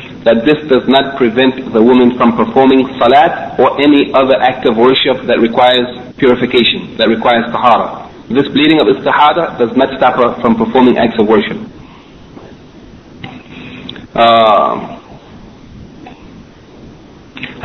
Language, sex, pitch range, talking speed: English, male, 120-140 Hz, 120 wpm